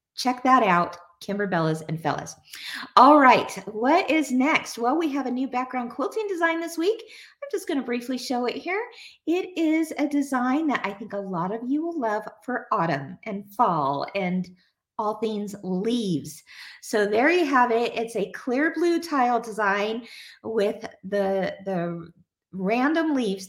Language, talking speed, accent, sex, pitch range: English, 170 wpm, American, female, 215-330 Hz